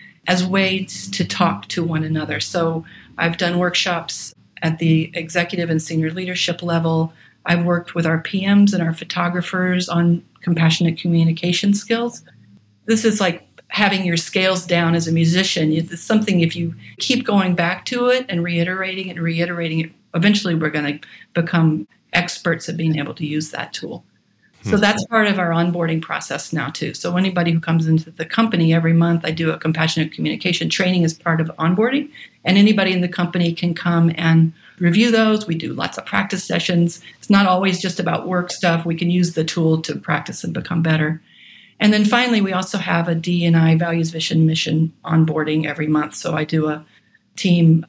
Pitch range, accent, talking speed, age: 160-185 Hz, American, 185 wpm, 40-59